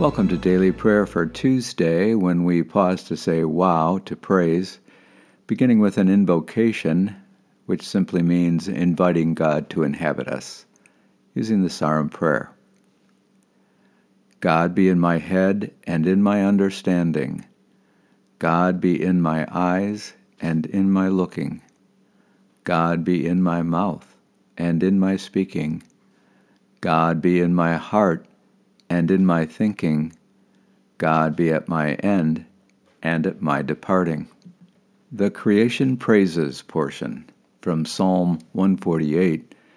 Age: 60-79